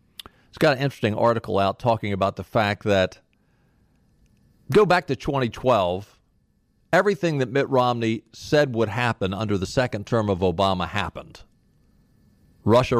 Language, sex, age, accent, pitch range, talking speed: English, male, 50-69, American, 105-145 Hz, 140 wpm